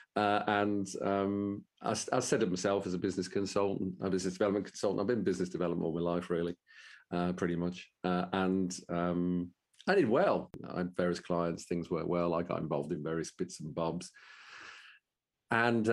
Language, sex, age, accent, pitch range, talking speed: English, male, 40-59, British, 85-95 Hz, 185 wpm